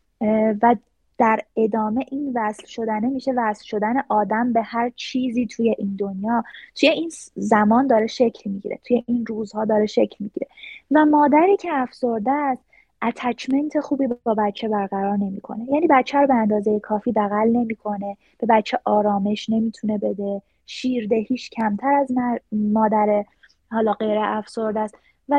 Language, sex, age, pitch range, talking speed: Persian, female, 20-39, 215-265 Hz, 140 wpm